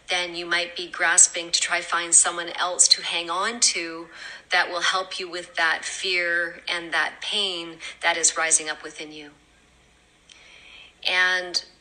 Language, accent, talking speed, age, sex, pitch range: English, American, 165 wpm, 40-59, female, 170-195 Hz